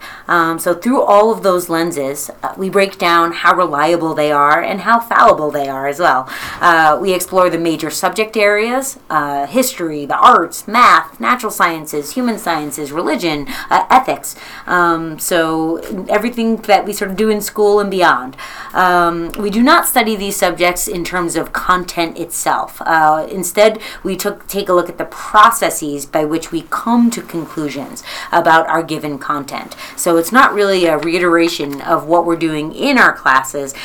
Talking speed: 170 wpm